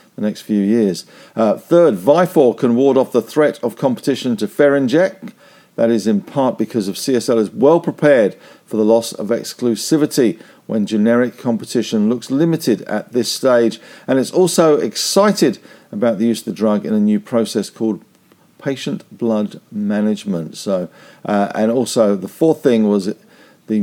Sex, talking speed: male, 165 wpm